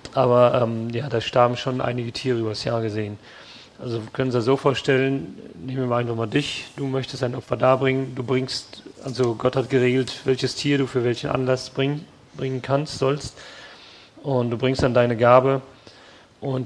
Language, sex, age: English, male, 40-59